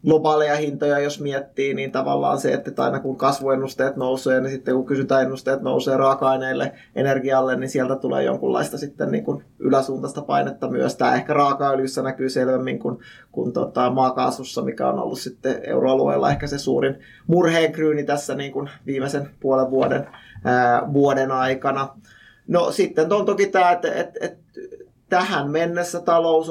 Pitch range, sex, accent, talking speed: 130-150 Hz, male, native, 150 wpm